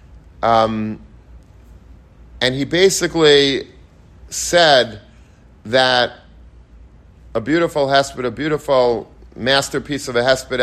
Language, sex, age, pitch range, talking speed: English, male, 40-59, 110-145 Hz, 85 wpm